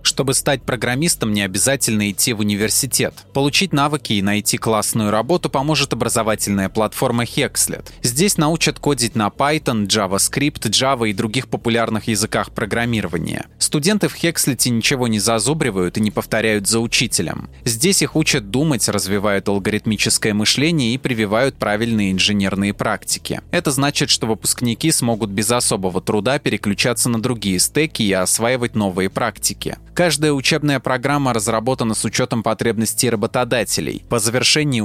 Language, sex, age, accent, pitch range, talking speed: Russian, male, 20-39, native, 105-135 Hz, 135 wpm